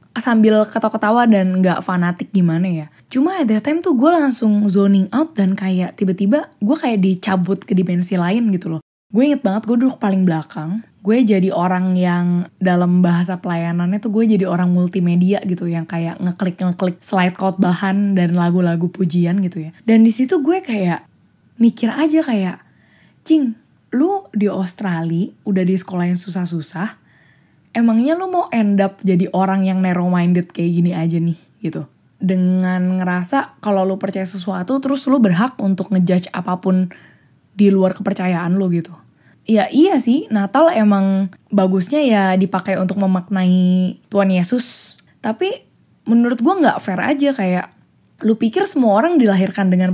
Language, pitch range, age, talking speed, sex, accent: Indonesian, 180-230 Hz, 20-39, 155 wpm, female, native